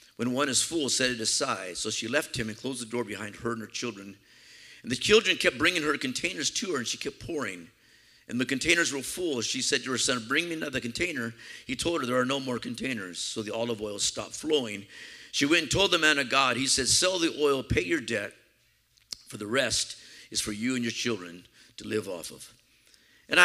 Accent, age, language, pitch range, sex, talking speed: American, 50-69, English, 115-155 Hz, male, 235 wpm